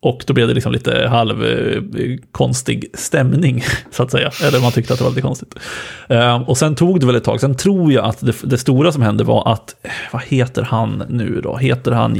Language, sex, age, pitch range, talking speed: Swedish, male, 30-49, 110-130 Hz, 220 wpm